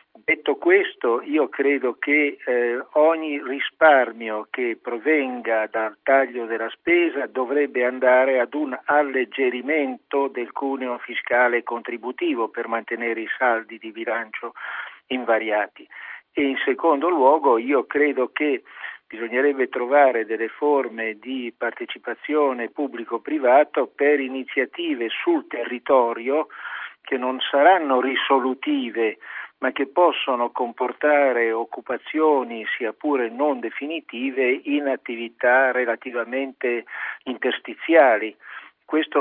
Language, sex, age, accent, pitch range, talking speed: Italian, male, 50-69, native, 120-150 Hz, 100 wpm